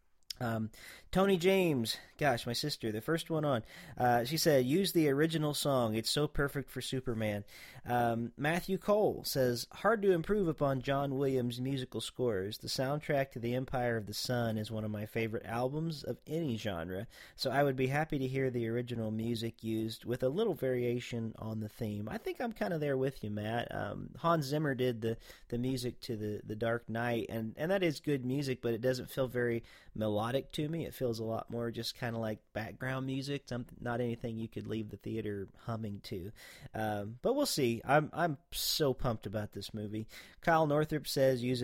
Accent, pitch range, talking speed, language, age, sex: American, 115-140 Hz, 200 wpm, English, 40-59, male